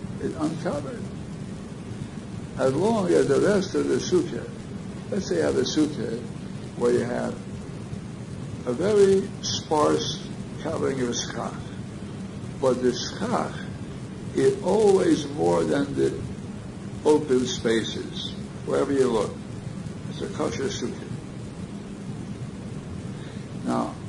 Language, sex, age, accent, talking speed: English, male, 60-79, American, 105 wpm